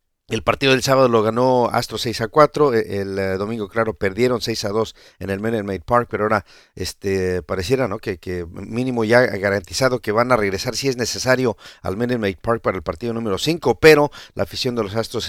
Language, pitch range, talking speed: English, 105-135 Hz, 220 wpm